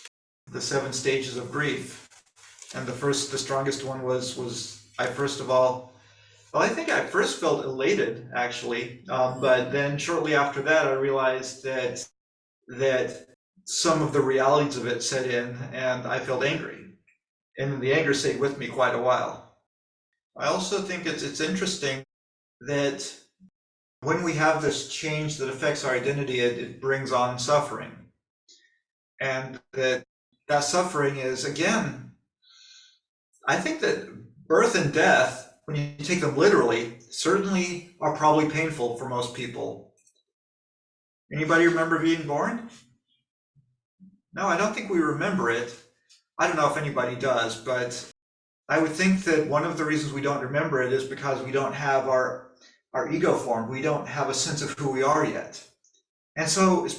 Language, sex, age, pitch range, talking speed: English, male, 40-59, 125-155 Hz, 160 wpm